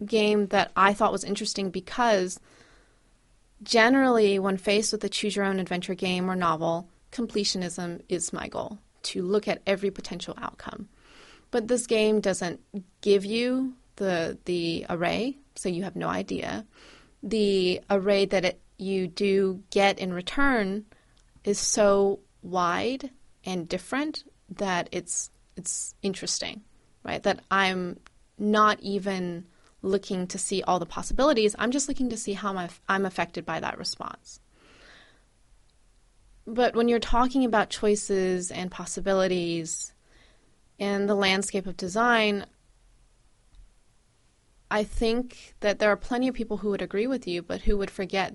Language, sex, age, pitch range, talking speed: English, female, 30-49, 180-210 Hz, 140 wpm